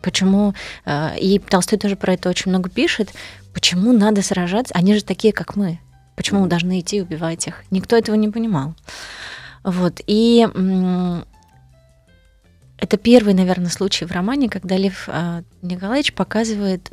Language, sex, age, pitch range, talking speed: Russian, female, 20-39, 165-200 Hz, 140 wpm